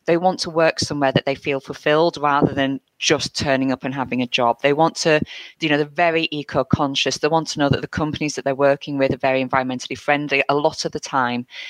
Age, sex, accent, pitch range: 30-49, female, British, 135-160 Hz